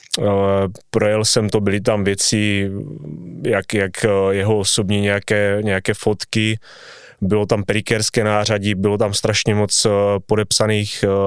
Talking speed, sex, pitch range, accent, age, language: 115 wpm, male, 105-120 Hz, native, 20-39, Czech